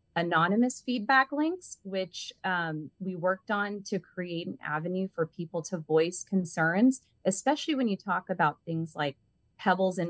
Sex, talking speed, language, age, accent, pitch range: female, 155 wpm, English, 30-49, American, 160-210 Hz